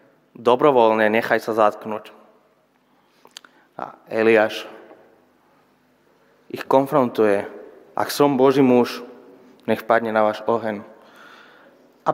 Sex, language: male, Slovak